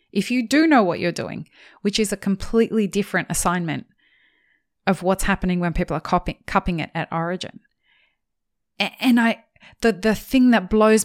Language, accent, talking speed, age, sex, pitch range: English, Australian, 165 wpm, 20-39, female, 175-220 Hz